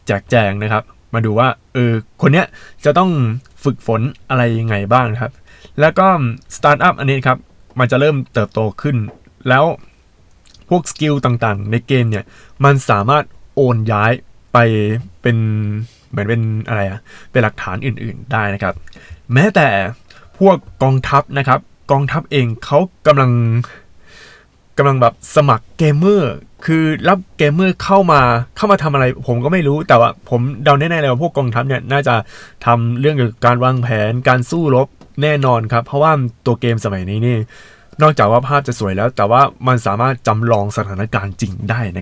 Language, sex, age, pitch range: Thai, male, 20-39, 110-145 Hz